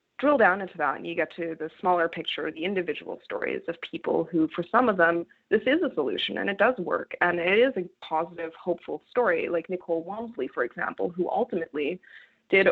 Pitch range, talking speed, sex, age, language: 160-185 Hz, 210 wpm, female, 20-39, English